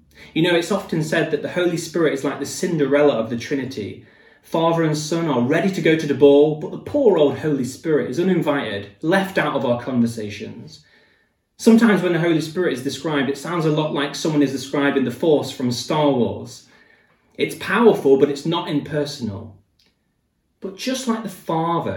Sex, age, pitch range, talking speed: male, 20-39, 135-200 Hz, 190 wpm